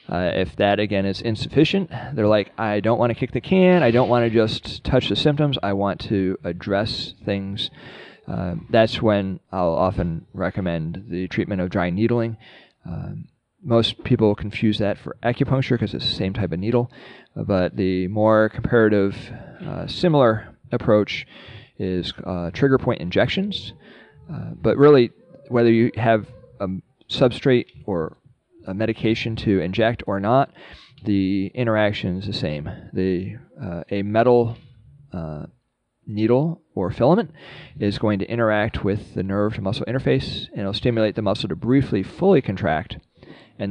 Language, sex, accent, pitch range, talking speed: English, male, American, 95-120 Hz, 155 wpm